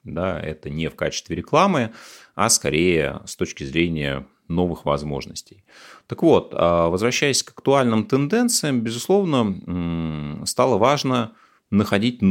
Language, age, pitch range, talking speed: Russian, 30-49, 85-120 Hz, 110 wpm